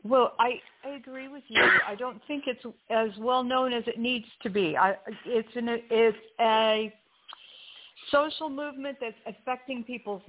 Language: English